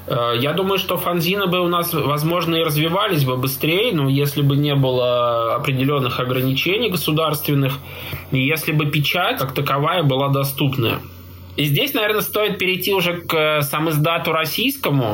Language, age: Russian, 20-39